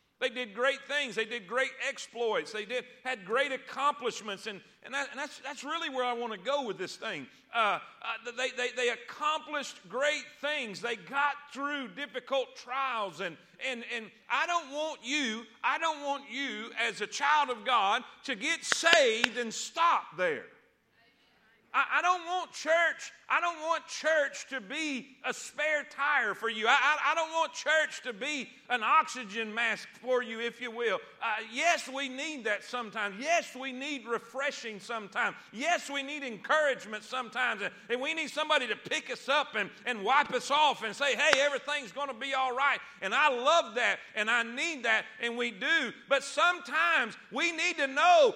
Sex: male